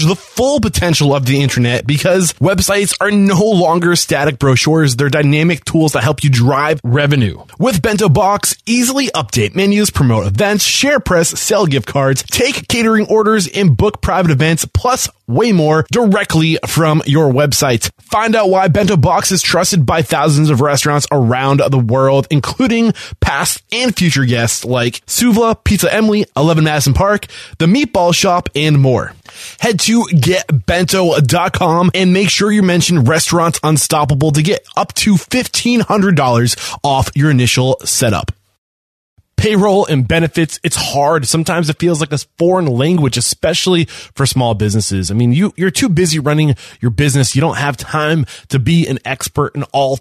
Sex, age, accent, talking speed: male, 20-39, American, 160 wpm